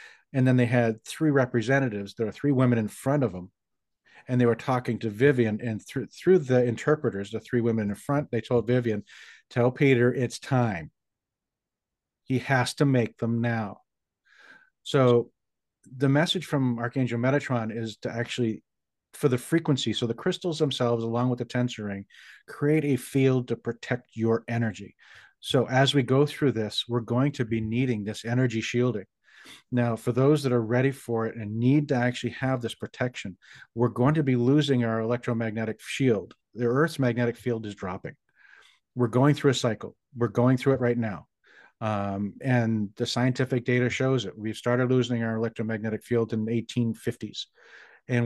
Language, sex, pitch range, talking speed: English, male, 115-130 Hz, 175 wpm